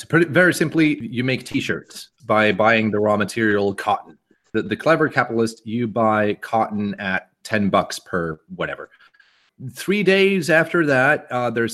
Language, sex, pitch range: English, male, 110-160 Hz